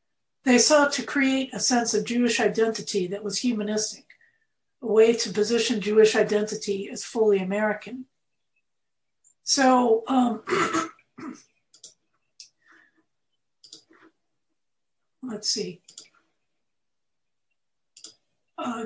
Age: 60-79